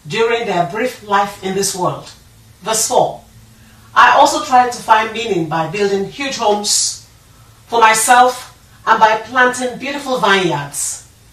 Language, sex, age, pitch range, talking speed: English, female, 40-59, 150-225 Hz, 140 wpm